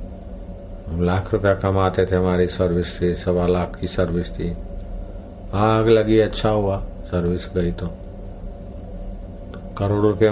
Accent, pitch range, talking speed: native, 95-105 Hz, 120 wpm